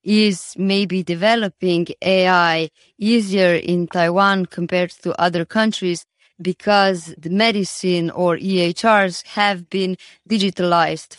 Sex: female